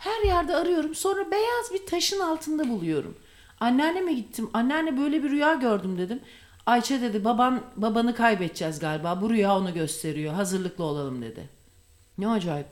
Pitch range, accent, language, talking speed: 170-240 Hz, Turkish, English, 150 wpm